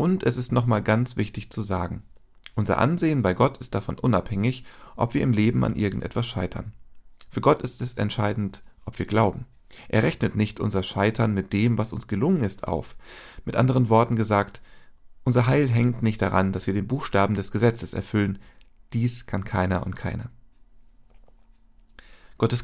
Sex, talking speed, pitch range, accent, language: male, 170 wpm, 95-125 Hz, German, German